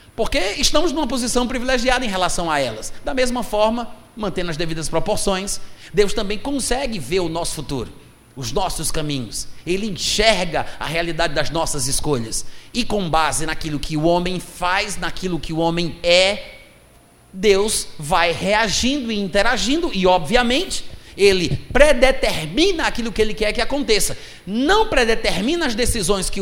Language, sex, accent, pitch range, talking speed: Portuguese, male, Brazilian, 175-245 Hz, 150 wpm